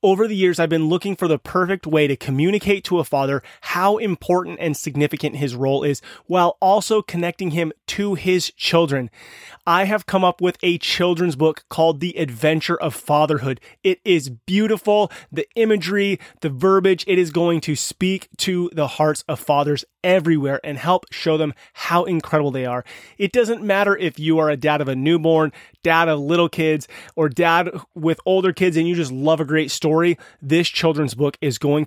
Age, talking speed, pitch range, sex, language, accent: 30-49, 190 wpm, 150-180 Hz, male, English, American